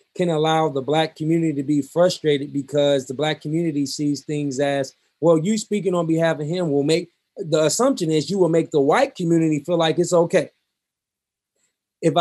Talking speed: 185 wpm